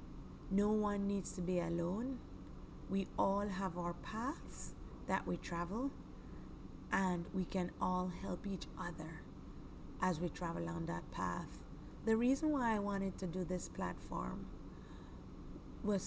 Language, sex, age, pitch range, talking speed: English, female, 30-49, 175-215 Hz, 140 wpm